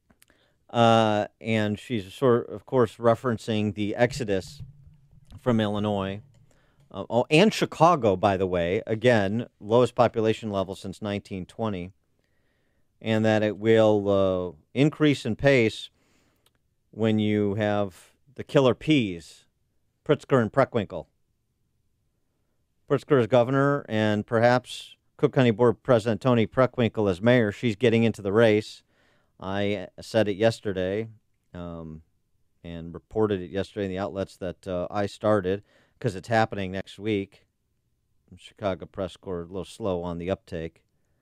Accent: American